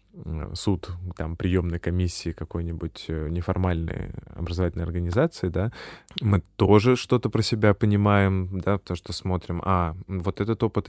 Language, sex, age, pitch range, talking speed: Russian, male, 20-39, 85-105 Hz, 125 wpm